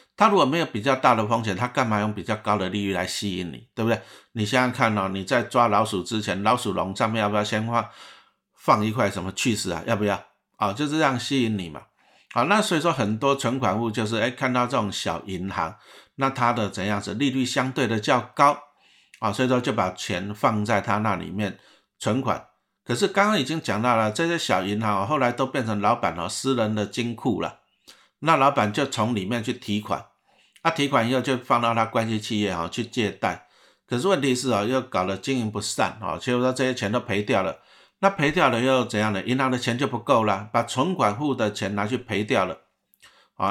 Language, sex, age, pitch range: Chinese, male, 50-69, 100-130 Hz